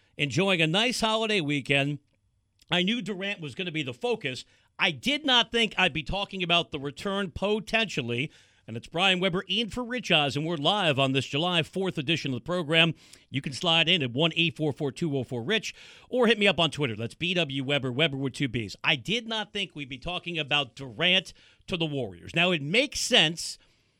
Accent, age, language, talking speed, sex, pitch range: American, 50-69, English, 205 wpm, male, 135-185 Hz